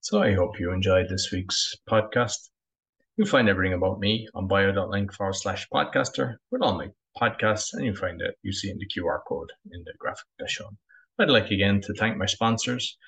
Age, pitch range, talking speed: 20-39, 100-120 Hz, 205 wpm